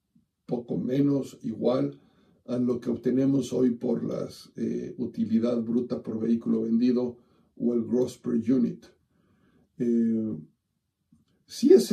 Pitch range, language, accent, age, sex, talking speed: 115-135 Hz, Spanish, Mexican, 60-79, male, 115 wpm